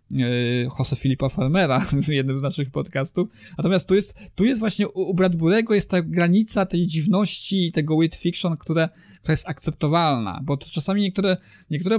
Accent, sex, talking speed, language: native, male, 165 wpm, Polish